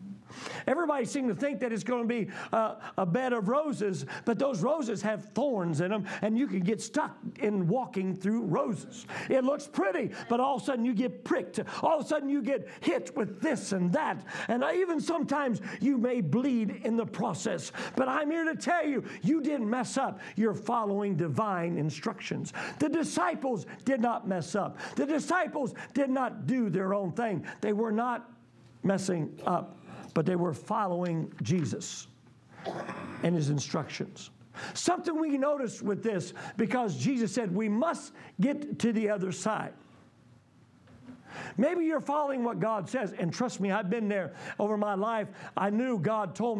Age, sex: 50-69, male